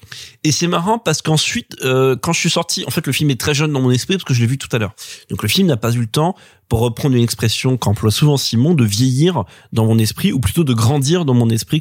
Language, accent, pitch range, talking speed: French, French, 120-155 Hz, 280 wpm